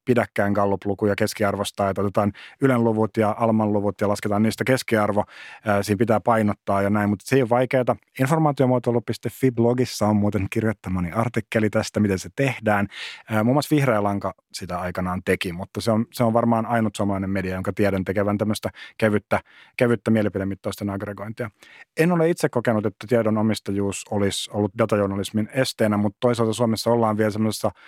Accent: native